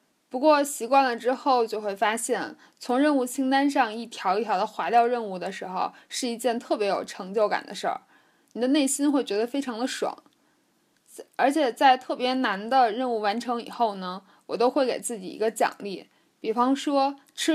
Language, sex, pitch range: Chinese, female, 215-270 Hz